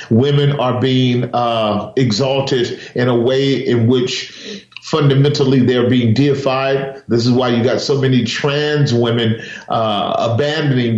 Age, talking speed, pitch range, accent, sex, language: 40-59, 135 wpm, 115-135 Hz, American, male, English